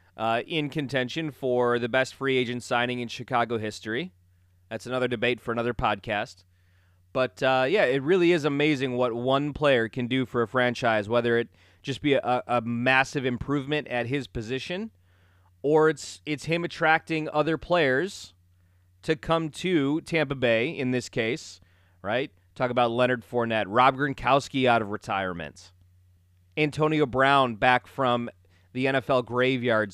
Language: English